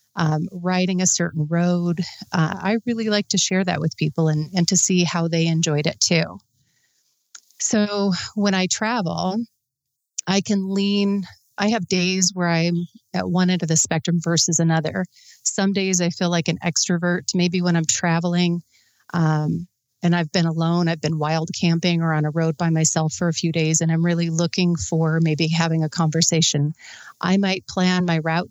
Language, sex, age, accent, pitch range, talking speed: English, female, 30-49, American, 165-180 Hz, 185 wpm